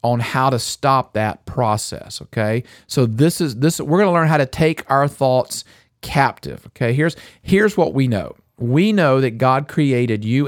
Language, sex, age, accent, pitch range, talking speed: English, male, 50-69, American, 120-155 Hz, 195 wpm